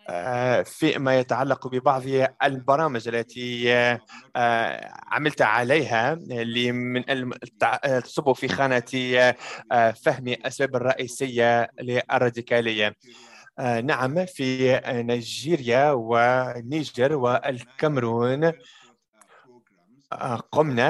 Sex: male